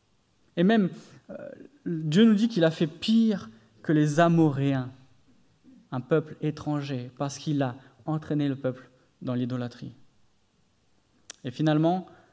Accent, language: French, French